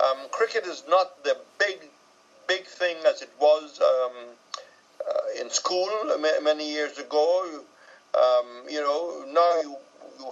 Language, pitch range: English, 150-220 Hz